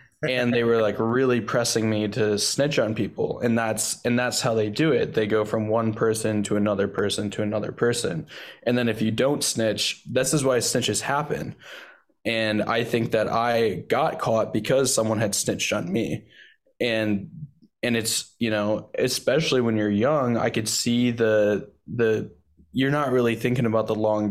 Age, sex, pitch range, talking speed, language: 10-29, male, 105-120 Hz, 185 wpm, English